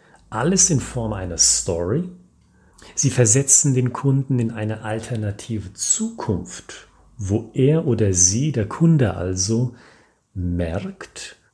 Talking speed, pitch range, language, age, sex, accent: 110 wpm, 100-130 Hz, German, 40-59, male, German